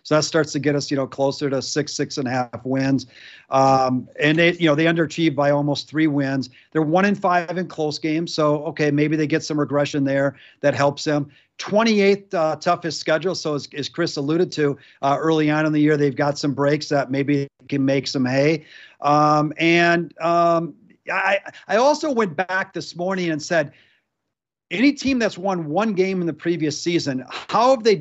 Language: English